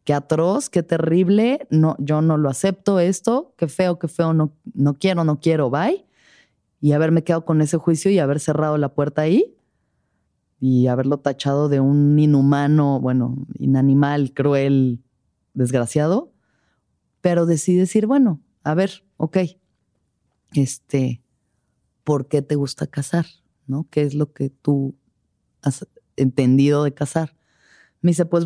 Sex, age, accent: female, 30-49, Mexican